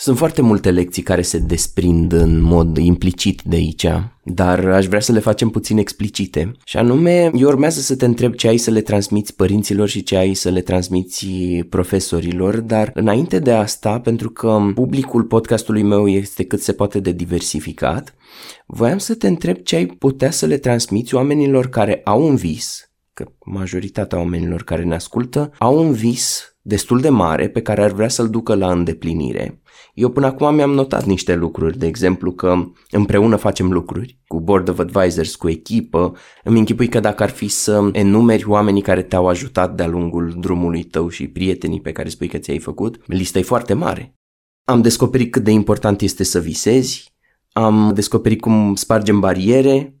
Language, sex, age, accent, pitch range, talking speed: Romanian, male, 20-39, native, 90-115 Hz, 180 wpm